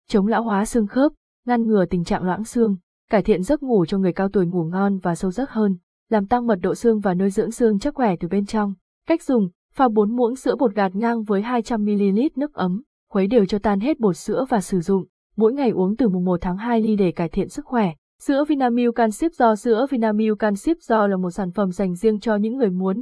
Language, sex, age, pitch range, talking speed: Vietnamese, female, 20-39, 195-235 Hz, 240 wpm